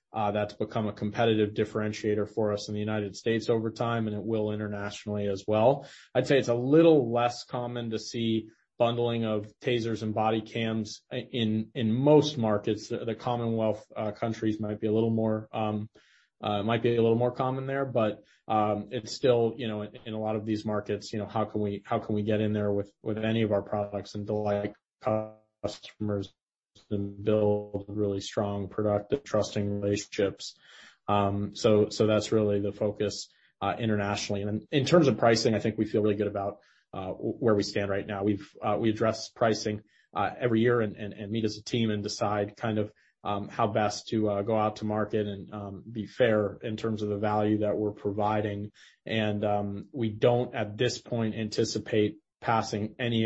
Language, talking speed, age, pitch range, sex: English, 195 wpm, 20-39, 105-115 Hz, male